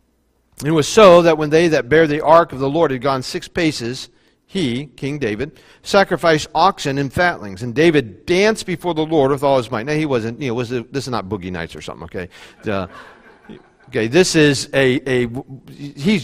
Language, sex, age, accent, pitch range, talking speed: English, male, 40-59, American, 130-175 Hz, 205 wpm